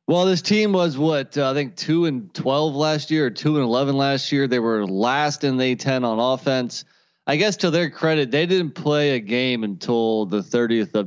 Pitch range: 115-150 Hz